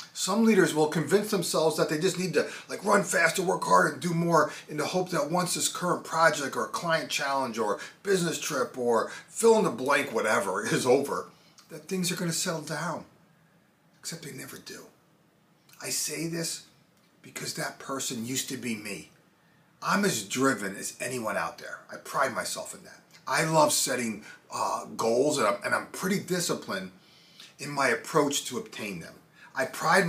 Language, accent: English, American